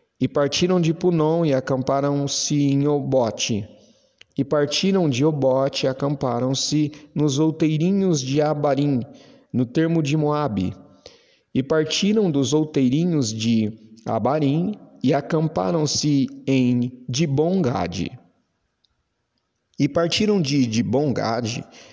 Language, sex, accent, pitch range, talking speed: Portuguese, male, Brazilian, 120-150 Hz, 100 wpm